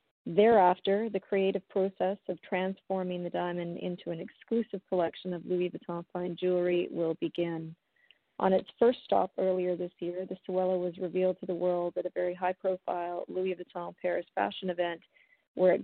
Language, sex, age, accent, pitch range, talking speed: English, female, 40-59, American, 175-195 Hz, 165 wpm